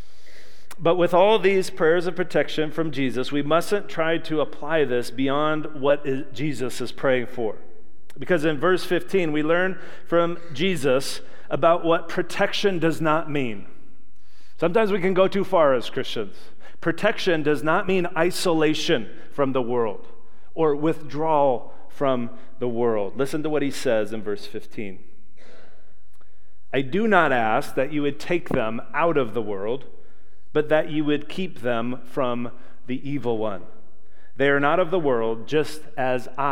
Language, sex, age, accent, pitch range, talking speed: English, male, 40-59, American, 120-165 Hz, 155 wpm